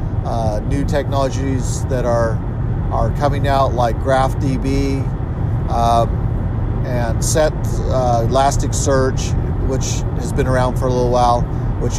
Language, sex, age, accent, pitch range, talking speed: English, male, 50-69, American, 115-135 Hz, 125 wpm